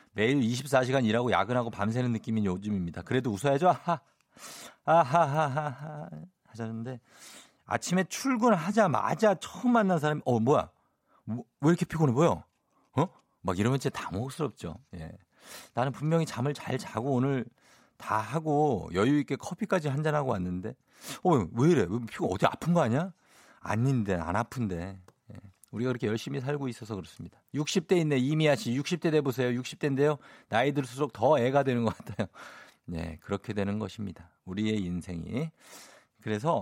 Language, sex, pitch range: Korean, male, 110-155 Hz